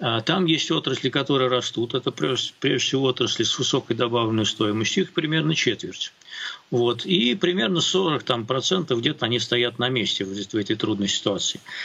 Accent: native